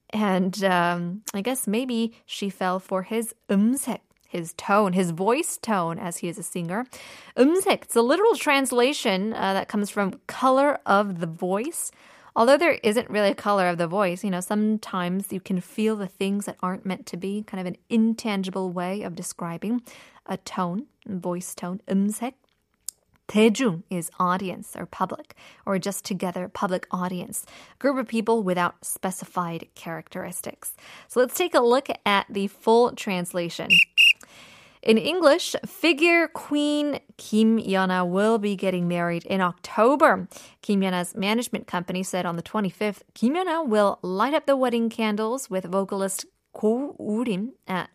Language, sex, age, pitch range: Korean, female, 20-39, 185-235 Hz